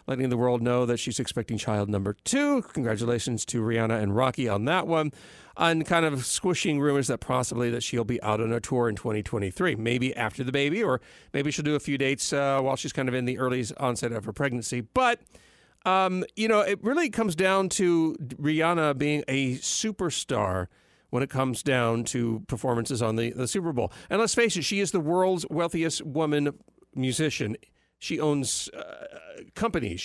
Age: 40-59